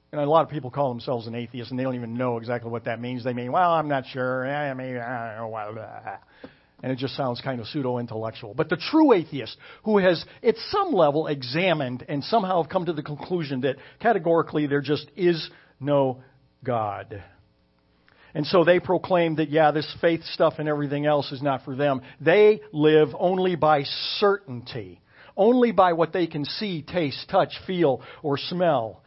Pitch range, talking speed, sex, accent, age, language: 125-165 Hz, 190 wpm, male, American, 50-69, English